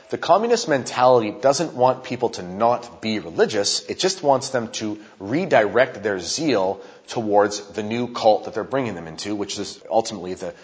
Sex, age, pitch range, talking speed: male, 30-49, 105-130 Hz, 175 wpm